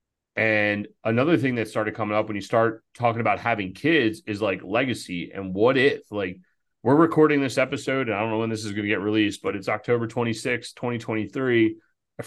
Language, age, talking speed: English, 30-49, 200 wpm